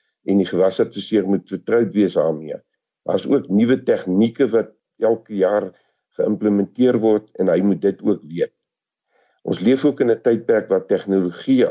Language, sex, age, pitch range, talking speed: English, male, 50-69, 95-115 Hz, 160 wpm